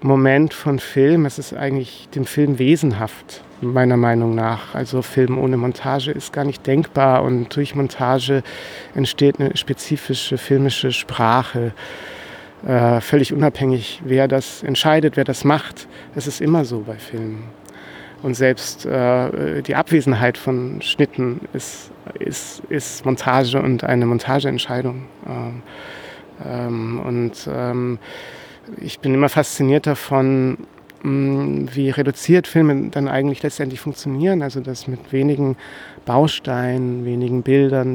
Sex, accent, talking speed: male, German, 125 wpm